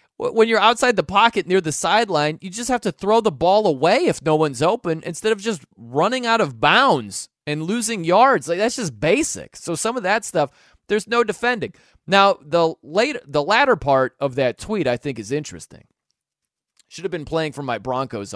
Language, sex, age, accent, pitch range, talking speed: English, male, 30-49, American, 135-180 Hz, 205 wpm